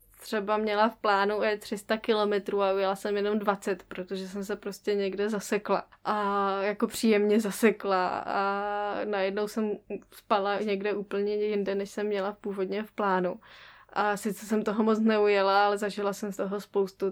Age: 10-29